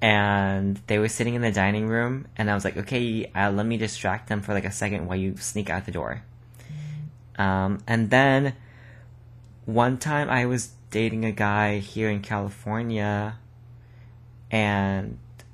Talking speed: 160 wpm